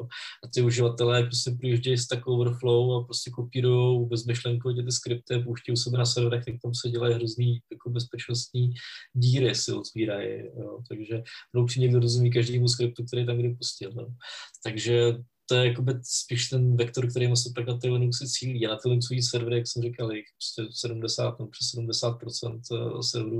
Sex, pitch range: male, 115-125 Hz